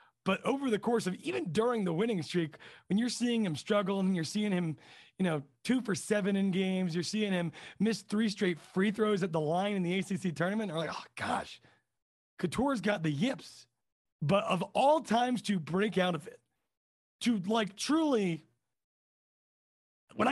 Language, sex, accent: English, male, American